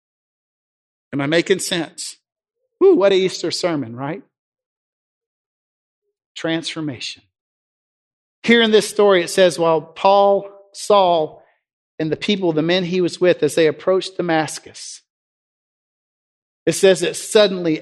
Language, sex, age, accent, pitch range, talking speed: English, male, 50-69, American, 160-220 Hz, 120 wpm